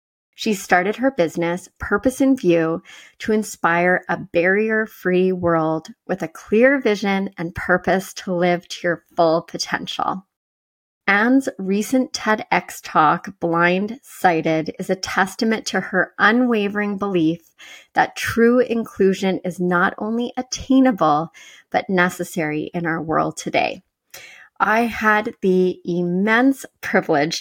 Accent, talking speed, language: American, 120 wpm, English